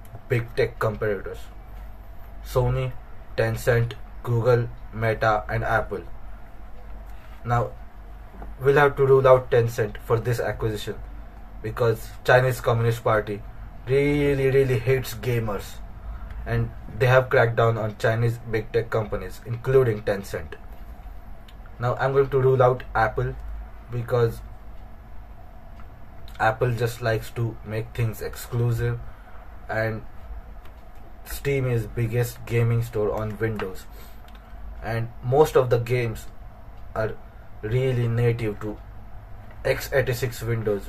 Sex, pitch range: male, 105-120 Hz